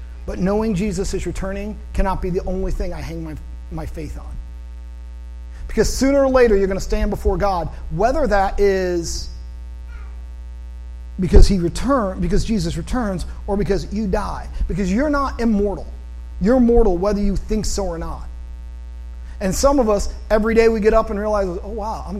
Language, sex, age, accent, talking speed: English, male, 40-59, American, 175 wpm